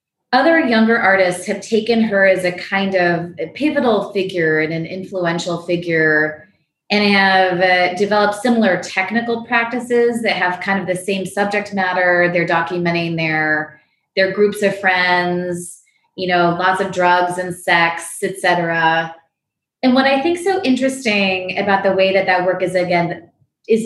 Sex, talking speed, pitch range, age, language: female, 155 wpm, 175-210 Hz, 20-39, English